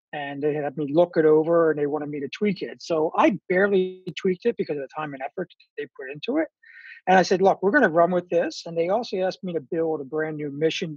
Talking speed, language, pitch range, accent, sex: 275 wpm, English, 160-210 Hz, American, male